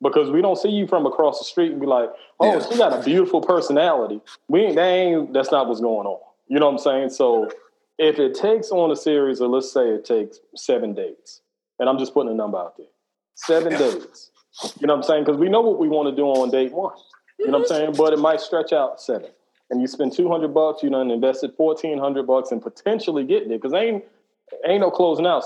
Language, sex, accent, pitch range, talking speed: English, male, American, 130-200 Hz, 245 wpm